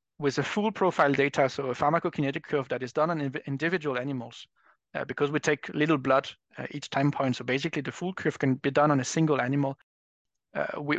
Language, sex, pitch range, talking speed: English, male, 135-160 Hz, 205 wpm